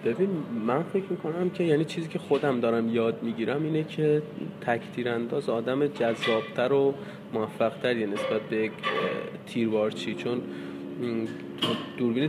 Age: 20-39